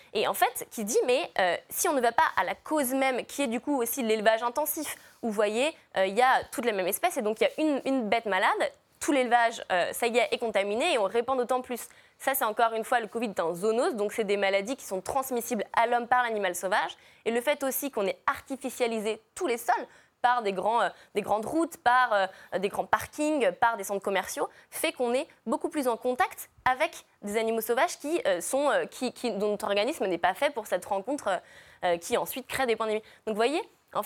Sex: female